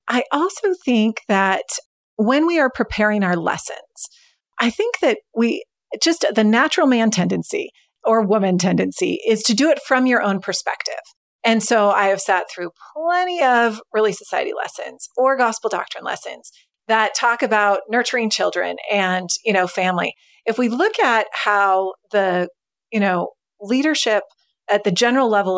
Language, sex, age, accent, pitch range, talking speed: English, female, 30-49, American, 205-290 Hz, 155 wpm